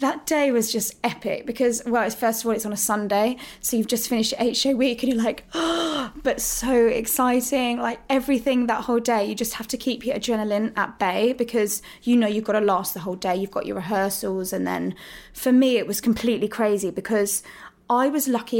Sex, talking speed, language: female, 220 wpm, English